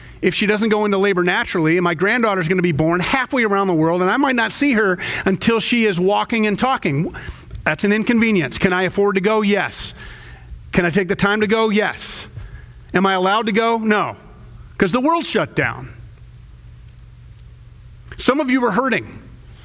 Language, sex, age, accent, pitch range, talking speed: English, male, 40-59, American, 165-225 Hz, 190 wpm